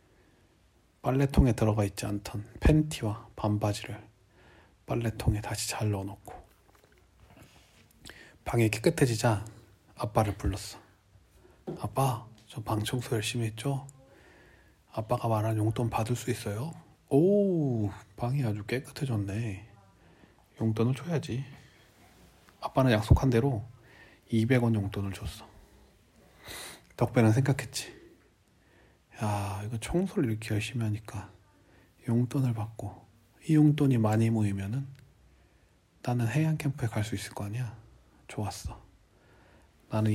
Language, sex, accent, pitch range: Korean, male, native, 100-125 Hz